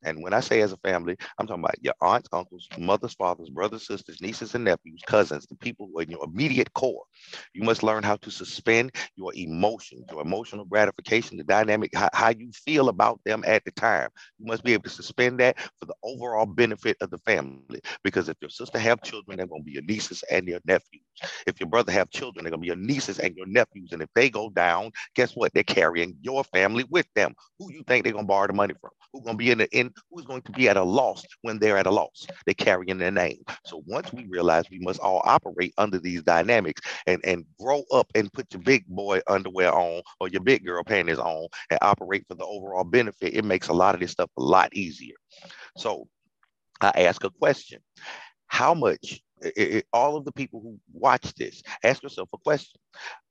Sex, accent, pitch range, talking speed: male, American, 90-120 Hz, 225 wpm